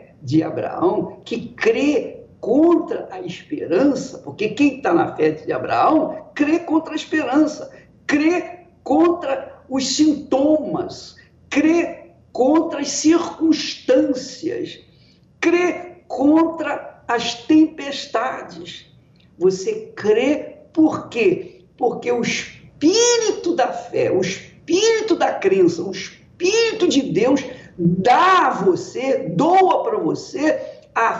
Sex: male